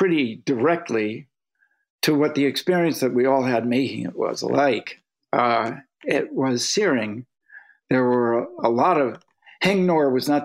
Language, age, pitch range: English, 60-79, 130-200 Hz